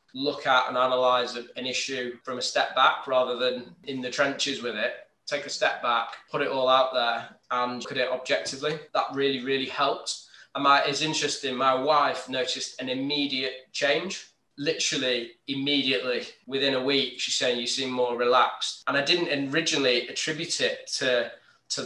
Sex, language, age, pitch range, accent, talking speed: male, English, 20-39, 125-145 Hz, British, 175 wpm